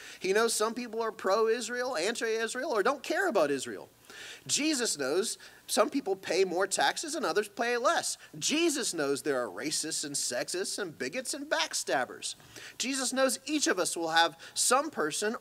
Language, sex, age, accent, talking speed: English, male, 30-49, American, 165 wpm